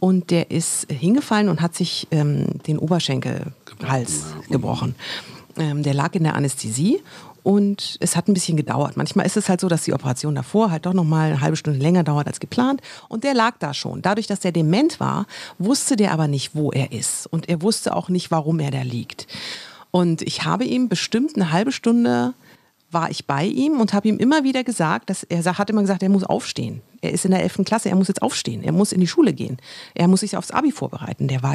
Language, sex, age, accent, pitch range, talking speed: German, female, 50-69, German, 155-215 Hz, 225 wpm